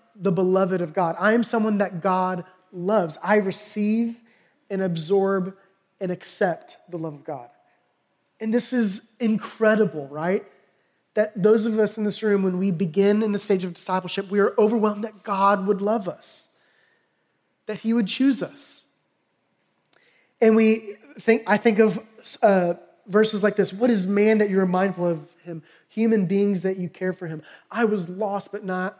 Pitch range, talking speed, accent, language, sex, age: 185-210 Hz, 170 wpm, American, English, male, 20-39